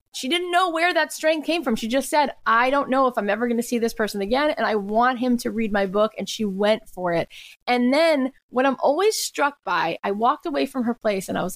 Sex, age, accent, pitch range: female, 20-39, American, 220-290 Hz